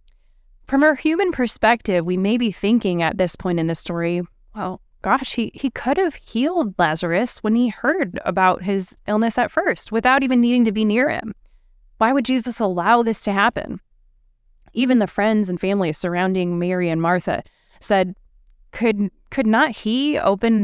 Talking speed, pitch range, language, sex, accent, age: 170 wpm, 185-255 Hz, English, female, American, 20-39